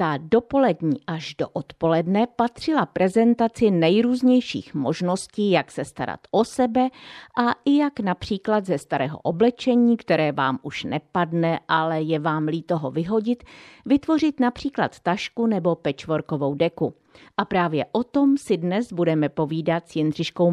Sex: female